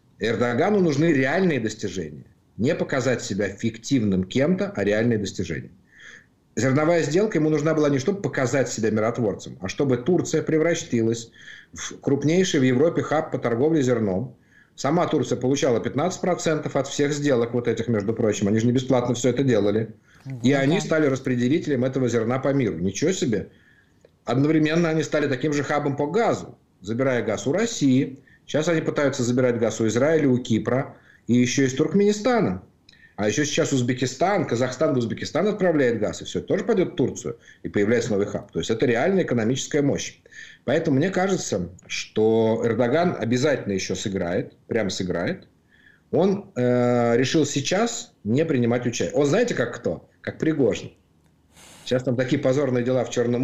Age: 50-69